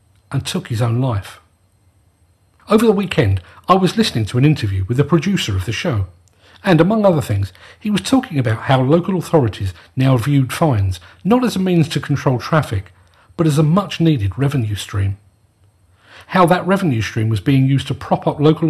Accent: British